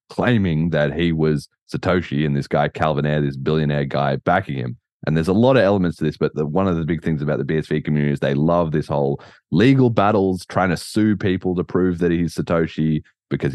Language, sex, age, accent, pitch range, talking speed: English, male, 20-39, Australian, 75-95 Hz, 225 wpm